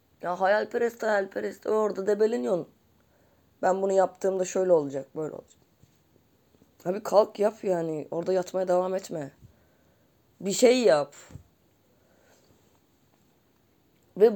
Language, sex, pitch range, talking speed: Turkish, female, 165-220 Hz, 110 wpm